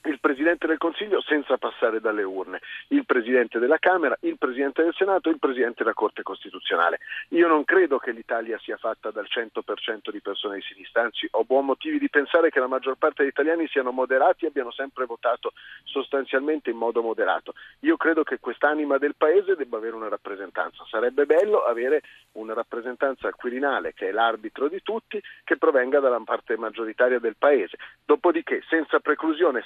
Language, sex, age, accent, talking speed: Italian, male, 40-59, native, 175 wpm